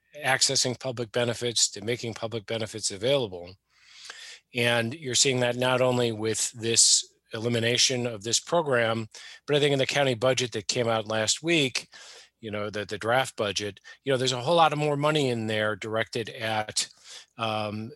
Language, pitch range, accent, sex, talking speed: English, 105-125 Hz, American, male, 175 wpm